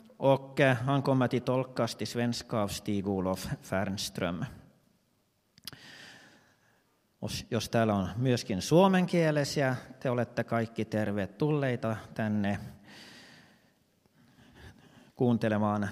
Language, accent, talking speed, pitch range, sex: Swedish, Finnish, 60 wpm, 105-130 Hz, male